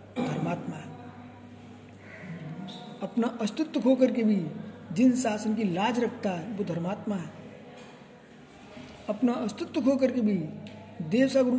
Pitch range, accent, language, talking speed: 160-240 Hz, native, Hindi, 120 wpm